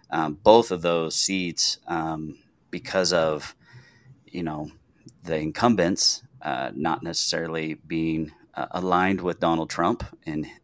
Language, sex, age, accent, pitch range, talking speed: English, male, 30-49, American, 80-100 Hz, 125 wpm